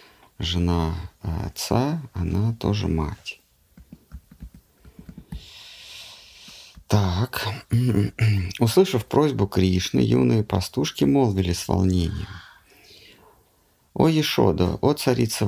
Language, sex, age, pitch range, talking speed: Russian, male, 50-69, 90-120 Hz, 70 wpm